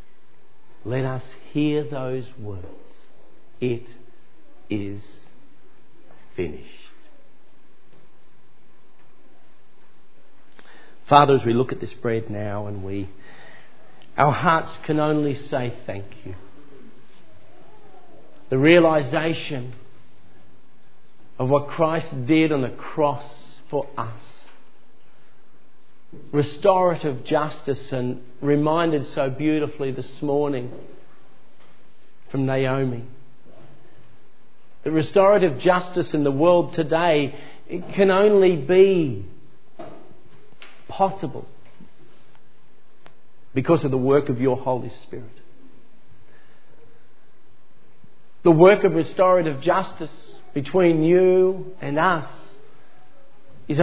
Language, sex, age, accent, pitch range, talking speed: English, male, 50-69, Australian, 125-165 Hz, 85 wpm